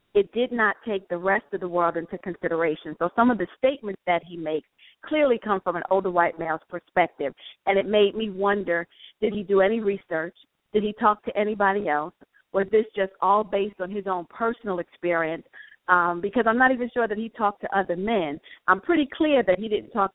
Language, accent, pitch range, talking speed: English, American, 175-205 Hz, 215 wpm